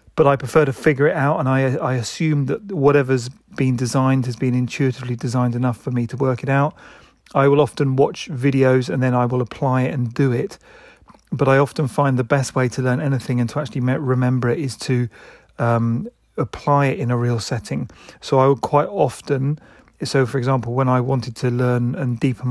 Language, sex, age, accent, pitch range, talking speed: English, male, 30-49, British, 125-140 Hz, 210 wpm